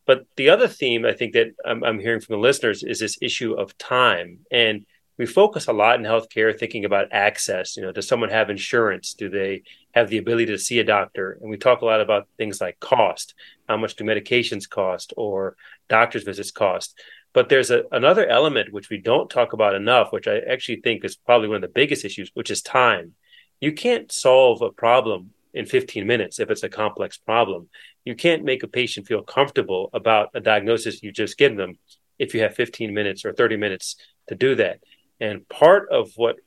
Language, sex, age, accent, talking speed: English, male, 30-49, American, 210 wpm